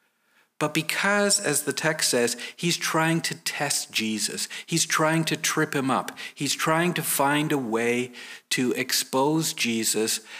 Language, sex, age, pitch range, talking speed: English, male, 50-69, 135-200 Hz, 150 wpm